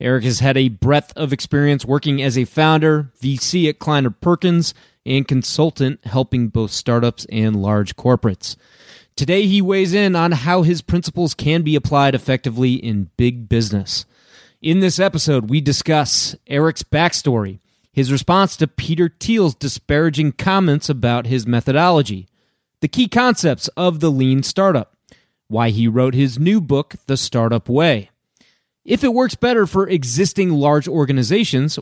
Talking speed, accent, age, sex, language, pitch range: 150 wpm, American, 30-49, male, English, 120-170 Hz